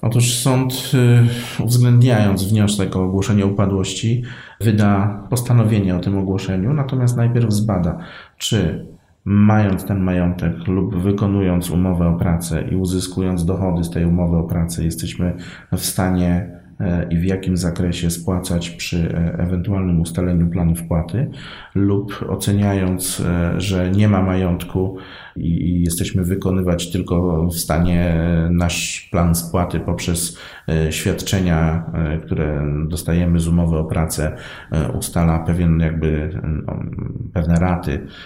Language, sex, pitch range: Polish, male, 85-100 Hz